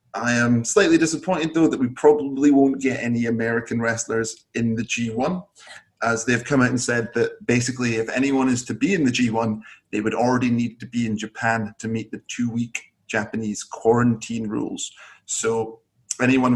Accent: British